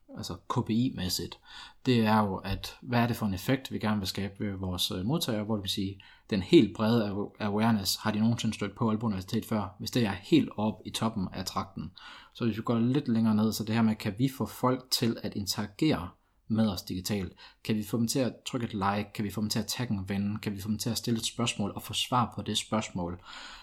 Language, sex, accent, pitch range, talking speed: Danish, male, native, 100-115 Hz, 245 wpm